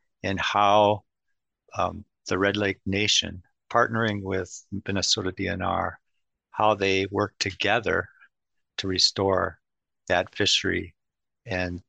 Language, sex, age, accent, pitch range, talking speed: English, male, 50-69, American, 95-110 Hz, 100 wpm